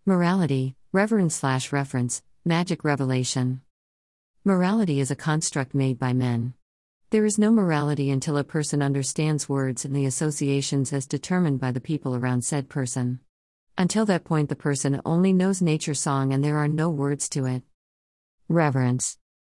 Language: English